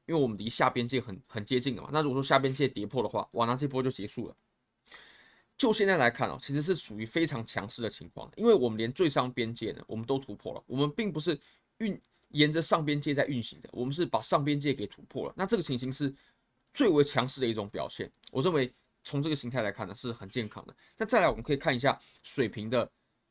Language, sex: Chinese, male